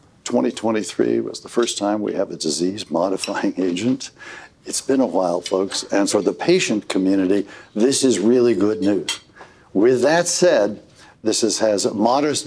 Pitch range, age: 105-130 Hz, 60-79